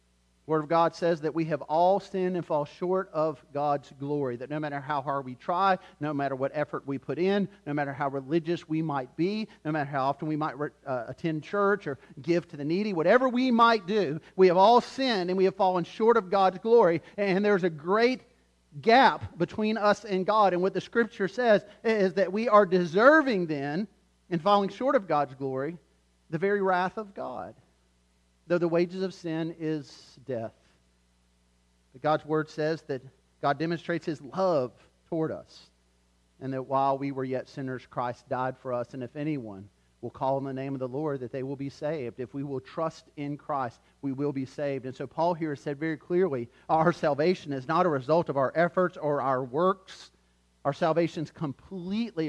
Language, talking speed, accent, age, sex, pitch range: English, 200 wpm, American, 40-59, male, 130-185 Hz